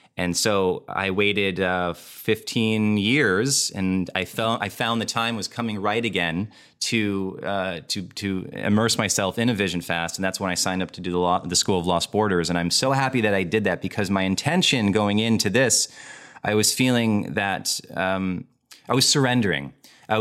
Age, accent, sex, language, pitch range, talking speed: 30-49, American, male, English, 90-110 Hz, 195 wpm